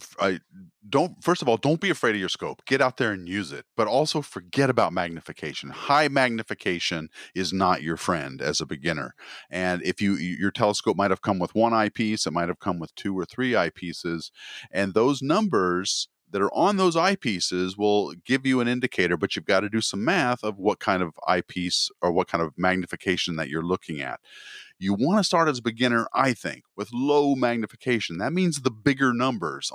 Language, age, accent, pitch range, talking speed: English, 40-59, American, 90-130 Hz, 205 wpm